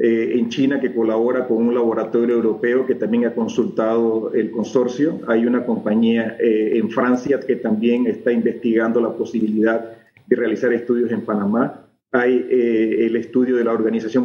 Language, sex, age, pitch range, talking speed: Spanish, male, 40-59, 115-130 Hz, 165 wpm